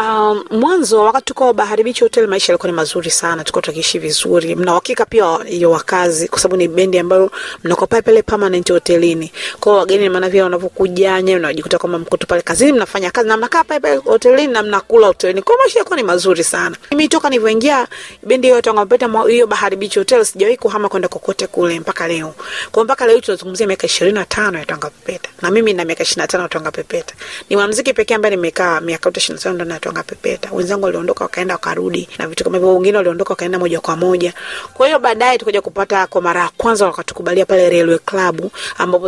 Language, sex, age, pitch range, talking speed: Swahili, female, 30-49, 175-240 Hz, 155 wpm